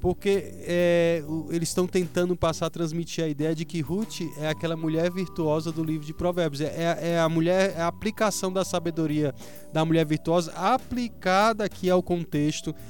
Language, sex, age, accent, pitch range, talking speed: Portuguese, male, 20-39, Brazilian, 150-195 Hz, 160 wpm